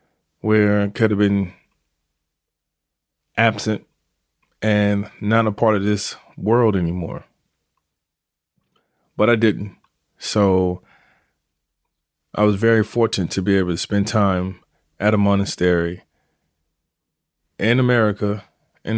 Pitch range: 95-110 Hz